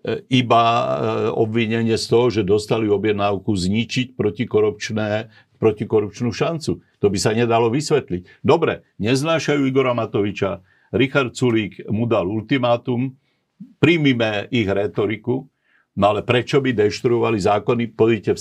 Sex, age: male, 50-69